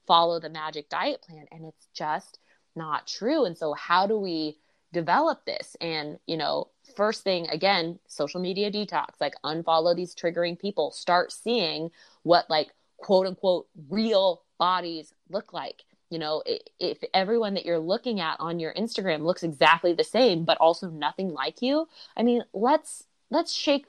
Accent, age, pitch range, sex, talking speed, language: American, 20-39, 160-220 Hz, female, 165 wpm, English